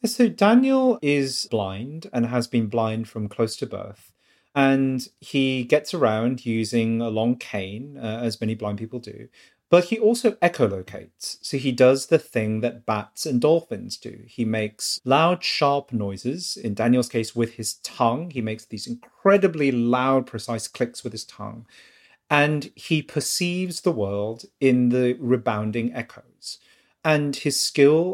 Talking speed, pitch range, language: 155 wpm, 115-145 Hz, English